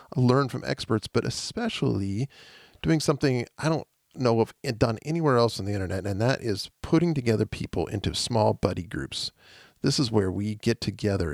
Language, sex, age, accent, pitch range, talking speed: English, male, 40-59, American, 95-115 Hz, 175 wpm